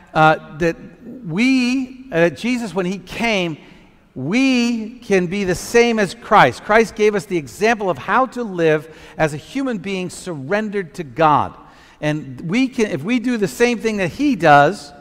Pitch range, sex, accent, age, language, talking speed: 165-230 Hz, male, American, 50-69, English, 170 wpm